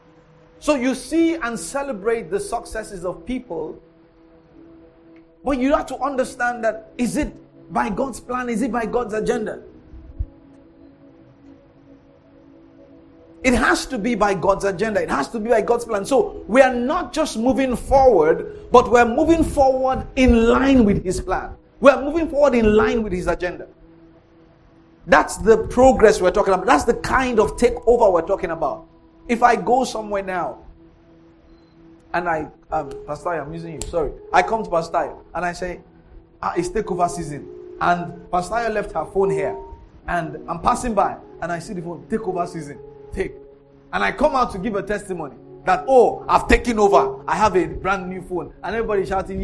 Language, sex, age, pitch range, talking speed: English, male, 50-69, 165-245 Hz, 170 wpm